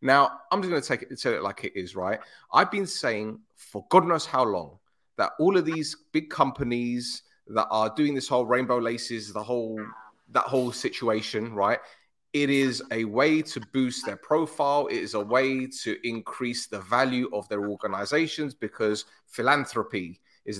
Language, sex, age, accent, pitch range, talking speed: English, male, 30-49, British, 110-175 Hz, 185 wpm